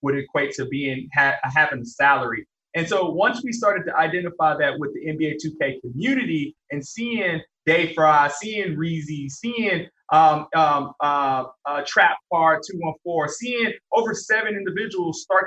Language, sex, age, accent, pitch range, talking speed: English, male, 20-39, American, 140-180 Hz, 155 wpm